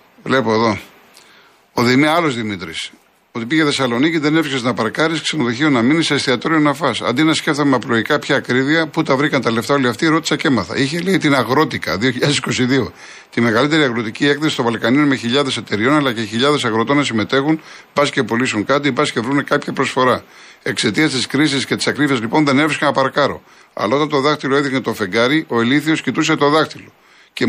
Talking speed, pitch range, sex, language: 195 wpm, 120-150 Hz, male, Greek